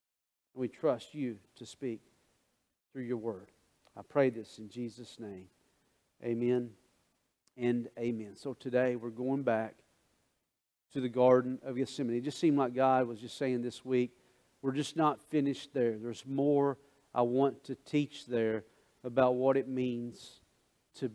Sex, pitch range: male, 120-145 Hz